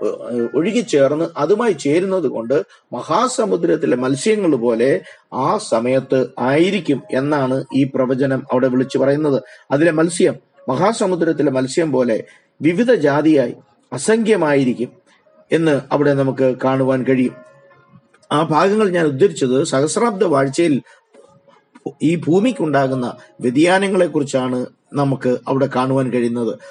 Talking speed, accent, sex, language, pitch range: 95 wpm, native, male, Malayalam, 130-165 Hz